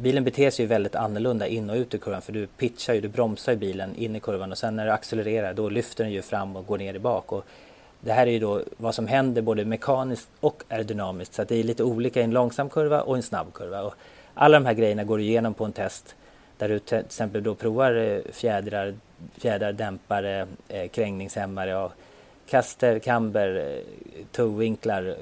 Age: 30-49